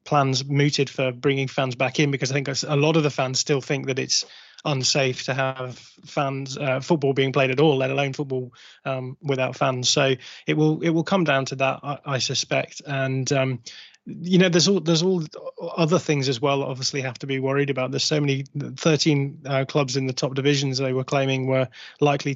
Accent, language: British, English